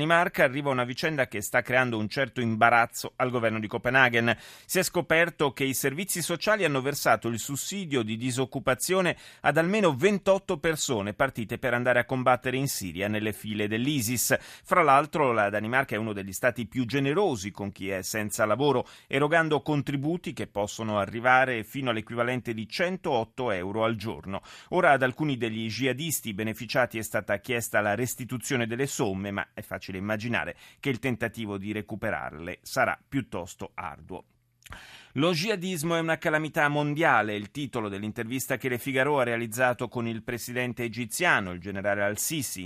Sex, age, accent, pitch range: male, 30-49, native, 110-140 Hz